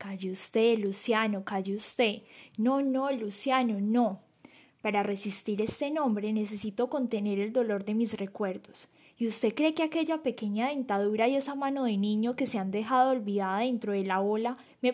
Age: 10-29